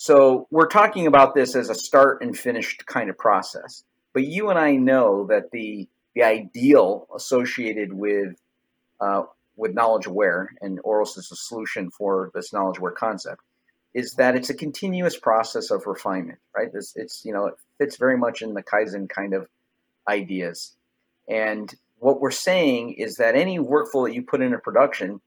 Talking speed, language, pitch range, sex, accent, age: 175 wpm, English, 100-145 Hz, male, American, 50-69